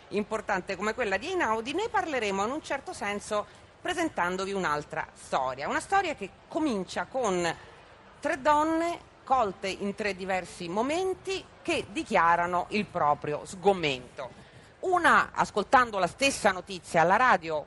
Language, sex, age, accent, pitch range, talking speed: Italian, female, 40-59, native, 175-270 Hz, 130 wpm